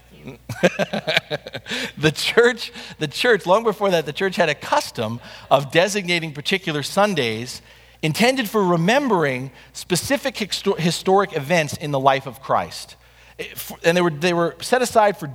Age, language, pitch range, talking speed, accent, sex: 40-59, English, 120-180 Hz, 135 wpm, American, male